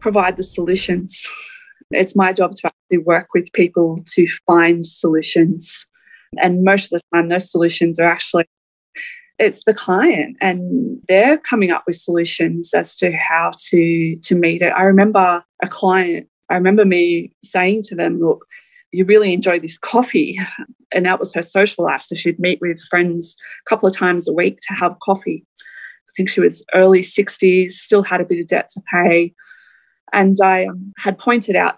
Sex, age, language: female, 20-39, English